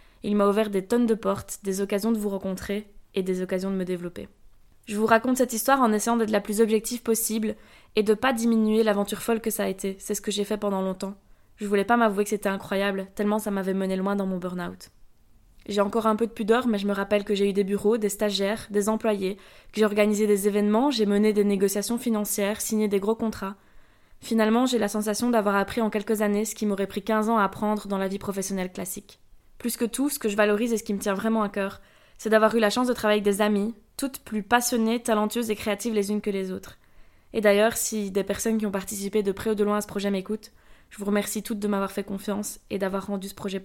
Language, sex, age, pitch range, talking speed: French, female, 20-39, 200-225 Hz, 255 wpm